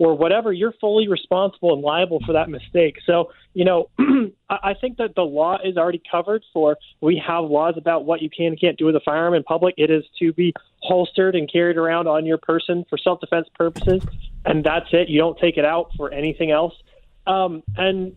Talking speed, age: 210 wpm, 30-49